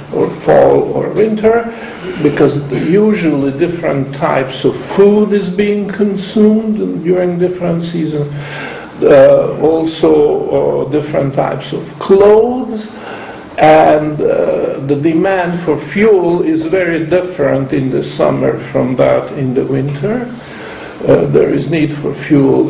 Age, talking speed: 50-69, 120 wpm